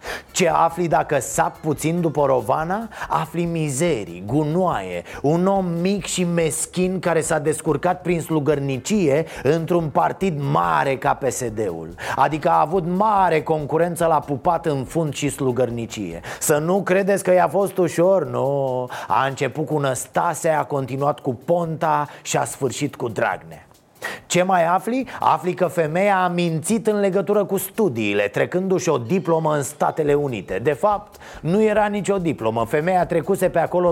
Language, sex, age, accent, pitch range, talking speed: Romanian, male, 30-49, native, 155-210 Hz, 150 wpm